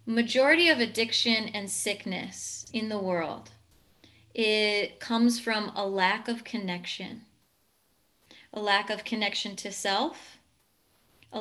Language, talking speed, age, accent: English, 115 wpm, 20-39, American